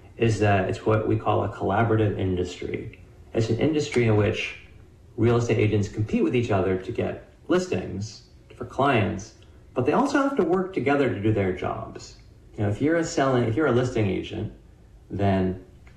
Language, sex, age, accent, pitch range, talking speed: English, male, 30-49, American, 100-115 Hz, 185 wpm